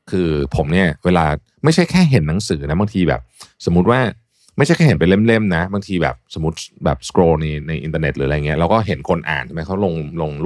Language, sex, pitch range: Thai, male, 75-100 Hz